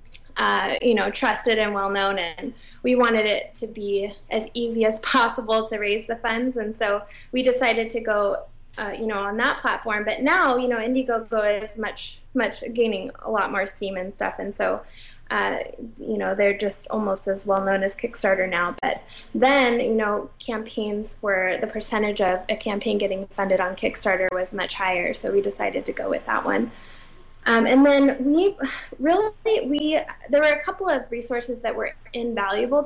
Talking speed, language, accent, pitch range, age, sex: 185 wpm, English, American, 205-250 Hz, 20-39, female